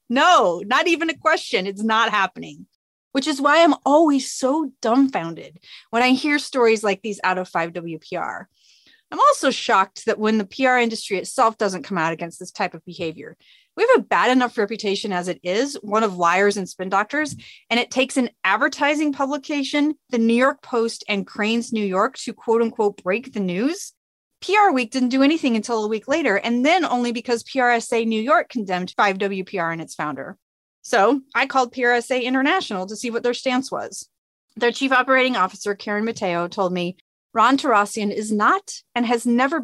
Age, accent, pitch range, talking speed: 30-49, American, 195-265 Hz, 190 wpm